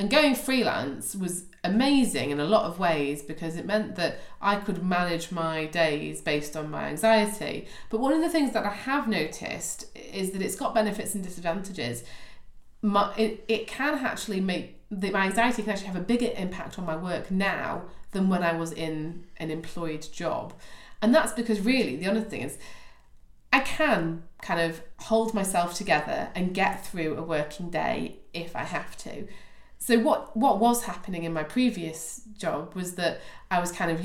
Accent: British